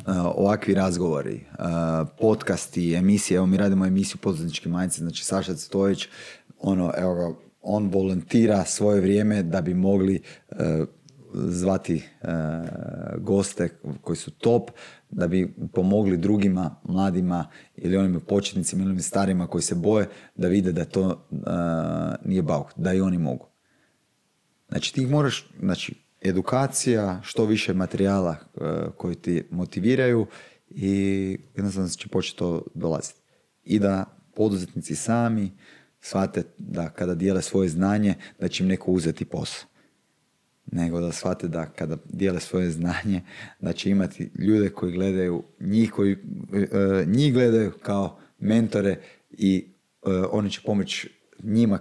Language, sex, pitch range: Croatian, male, 90-100 Hz